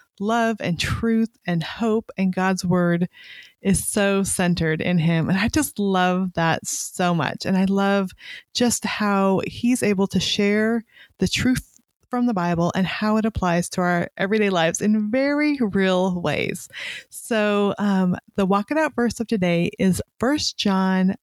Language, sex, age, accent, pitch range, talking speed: English, female, 30-49, American, 180-220 Hz, 160 wpm